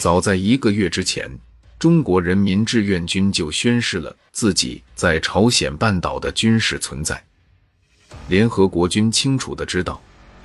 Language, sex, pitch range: Chinese, male, 85-110 Hz